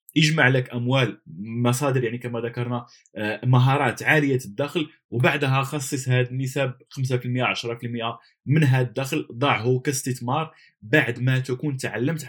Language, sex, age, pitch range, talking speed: Arabic, male, 20-39, 120-140 Hz, 120 wpm